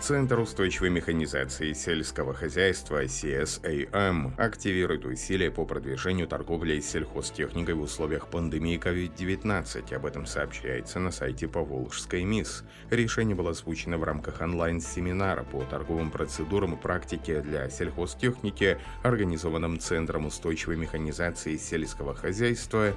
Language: Russian